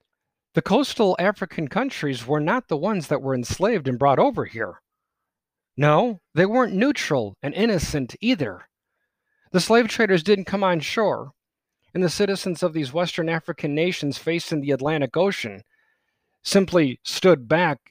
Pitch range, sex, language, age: 130-185 Hz, male, English, 40-59